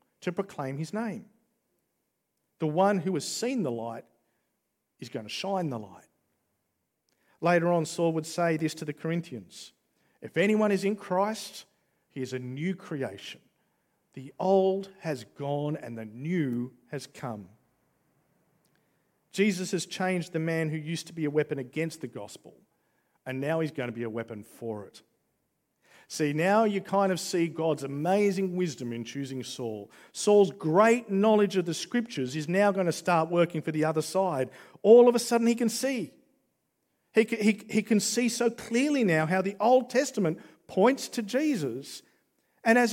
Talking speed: 170 wpm